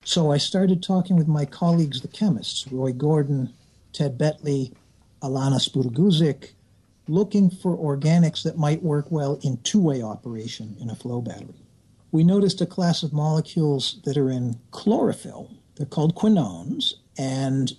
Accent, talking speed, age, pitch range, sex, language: American, 145 wpm, 60-79, 130-165 Hz, male, English